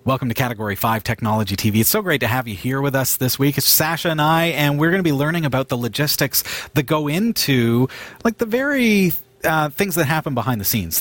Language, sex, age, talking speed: English, male, 40-59, 230 wpm